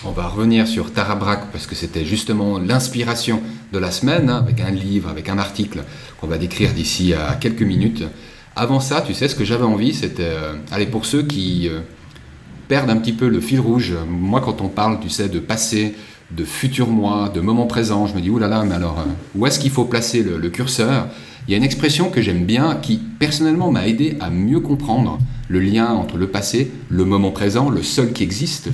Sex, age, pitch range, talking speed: male, 30-49, 95-125 Hz, 220 wpm